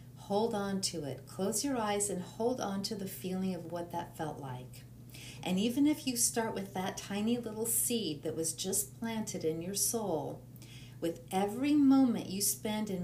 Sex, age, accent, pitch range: female, 50-69, American, 135-205 Hz